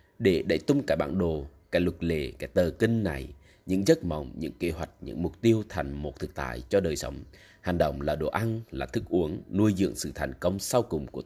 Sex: male